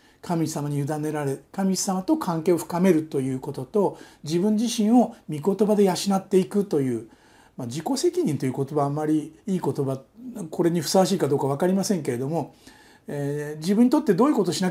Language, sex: Japanese, male